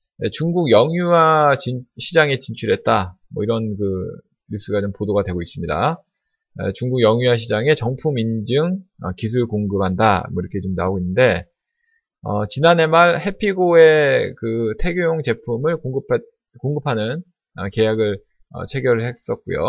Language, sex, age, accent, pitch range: Korean, male, 20-39, native, 105-160 Hz